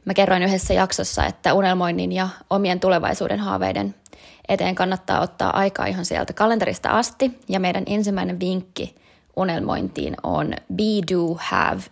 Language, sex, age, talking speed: Finnish, female, 20-39, 135 wpm